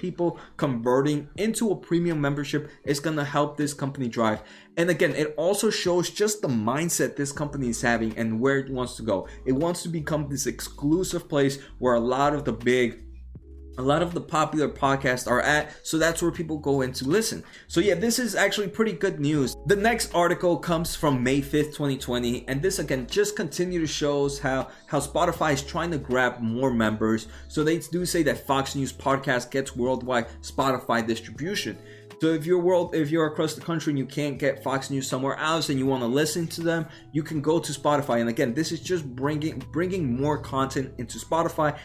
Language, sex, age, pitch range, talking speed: English, male, 20-39, 130-165 Hz, 205 wpm